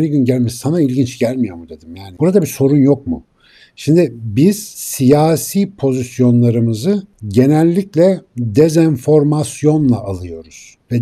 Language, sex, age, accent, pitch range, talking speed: Turkish, male, 60-79, native, 120-155 Hz, 120 wpm